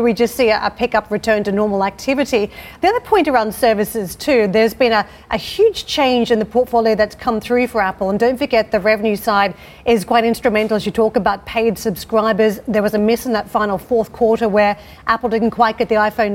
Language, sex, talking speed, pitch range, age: English, female, 220 wpm, 210-235 Hz, 40-59